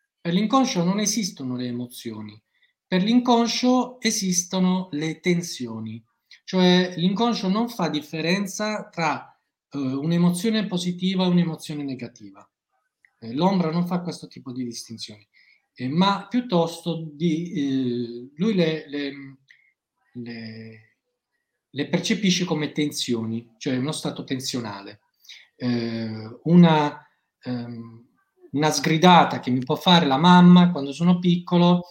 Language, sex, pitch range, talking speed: Italian, male, 125-175 Hz, 115 wpm